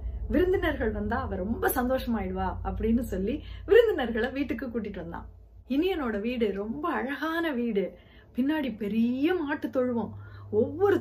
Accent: native